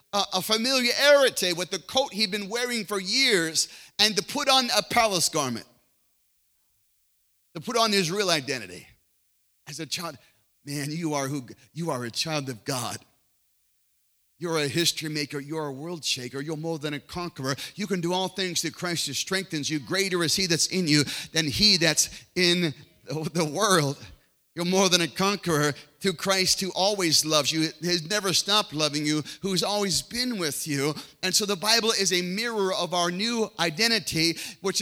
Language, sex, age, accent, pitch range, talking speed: English, male, 40-59, American, 160-220 Hz, 180 wpm